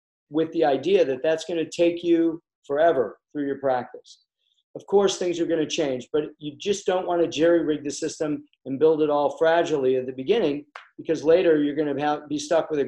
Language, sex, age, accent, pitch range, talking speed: English, male, 40-59, American, 140-165 Hz, 195 wpm